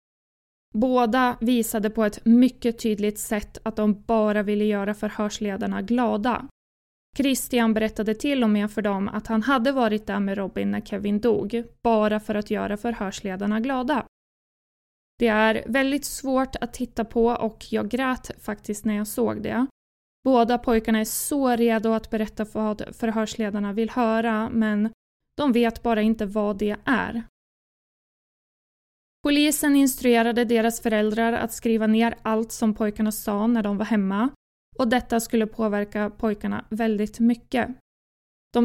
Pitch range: 215-240 Hz